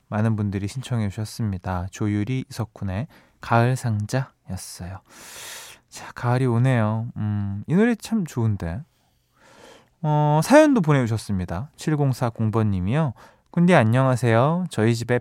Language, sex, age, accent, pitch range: Korean, male, 20-39, native, 110-165 Hz